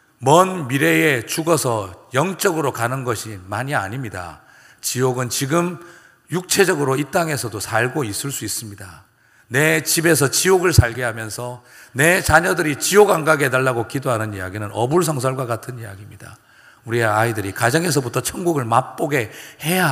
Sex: male